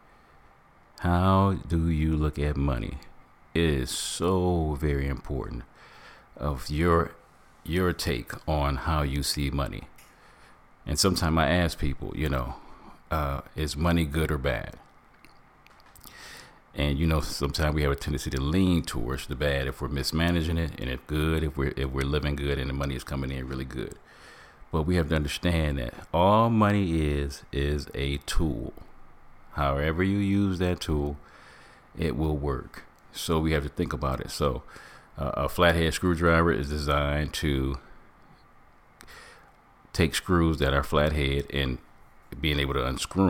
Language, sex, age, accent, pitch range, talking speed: English, male, 40-59, American, 70-85 Hz, 155 wpm